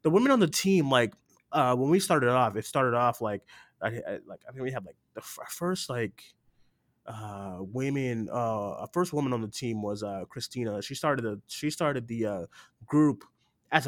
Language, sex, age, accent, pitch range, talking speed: English, male, 20-39, American, 110-130 Hz, 210 wpm